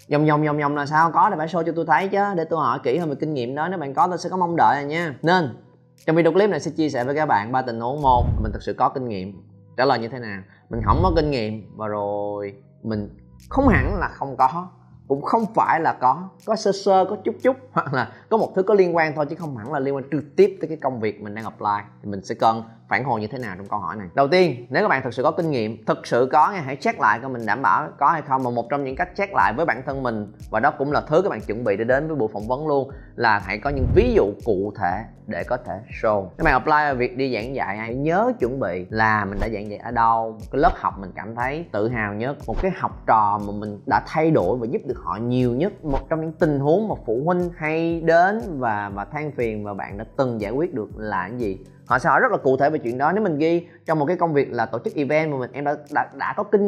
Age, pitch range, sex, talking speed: 20-39, 110-160 Hz, male, 295 wpm